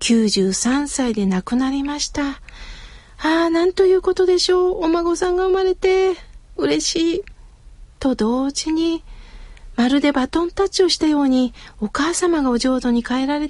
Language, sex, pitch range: Japanese, female, 245-315 Hz